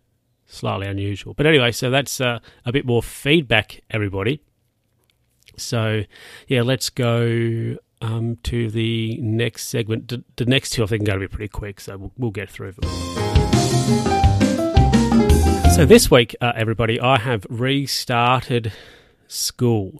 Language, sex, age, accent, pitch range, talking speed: English, male, 30-49, Australian, 100-120 Hz, 140 wpm